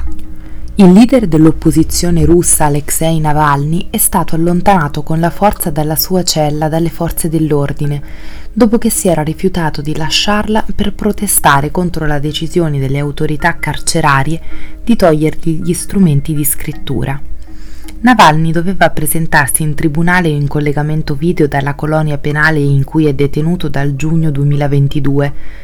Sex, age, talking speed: female, 20-39, 135 wpm